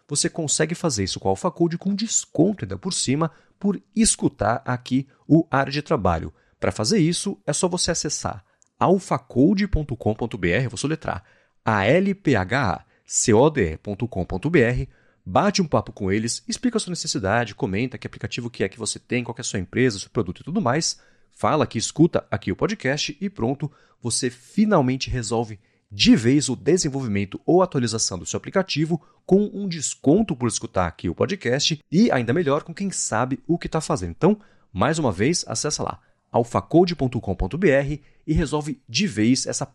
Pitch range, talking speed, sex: 115-165 Hz, 170 wpm, male